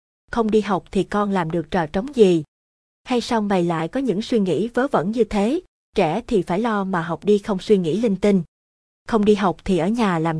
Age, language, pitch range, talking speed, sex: 20-39, Vietnamese, 175-220 Hz, 235 wpm, female